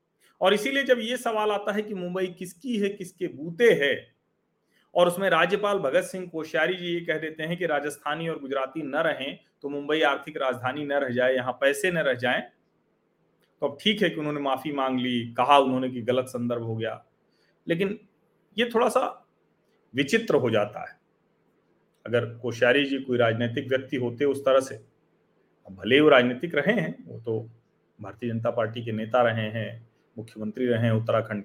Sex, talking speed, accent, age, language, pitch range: male, 180 wpm, native, 40-59, Hindi, 125-205 Hz